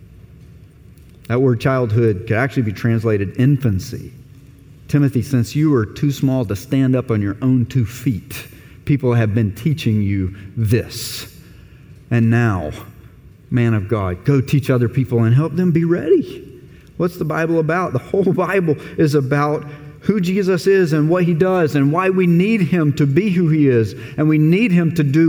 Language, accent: English, American